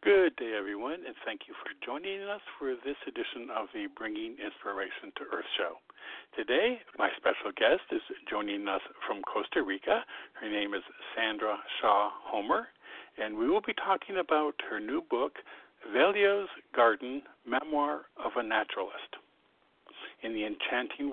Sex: male